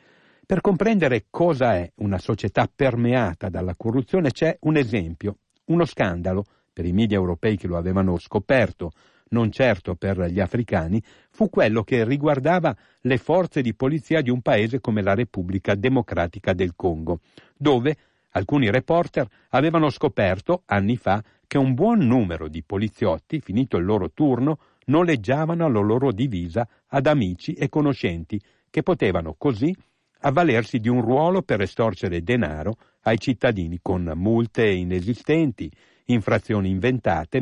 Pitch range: 95-145 Hz